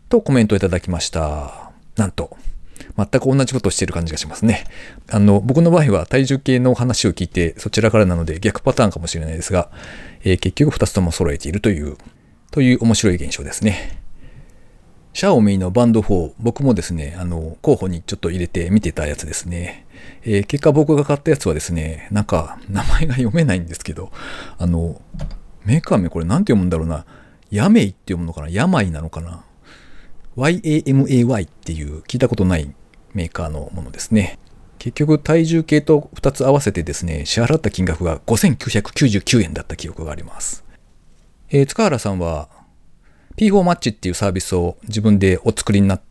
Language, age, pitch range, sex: Japanese, 40-59, 85-125 Hz, male